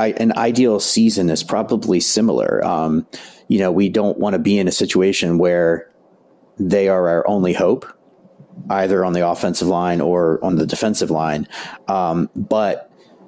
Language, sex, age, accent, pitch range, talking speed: English, male, 40-59, American, 85-100 Hz, 160 wpm